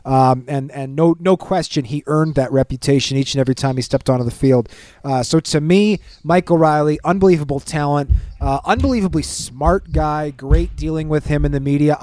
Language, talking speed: English, 190 wpm